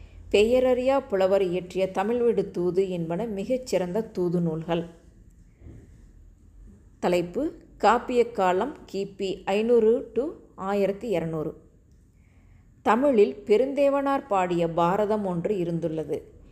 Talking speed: 85 wpm